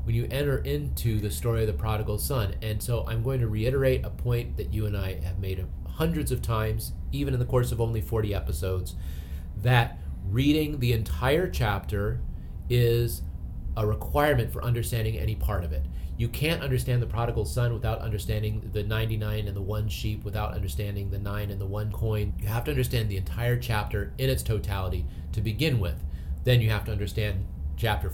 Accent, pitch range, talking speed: American, 95-125 Hz, 190 wpm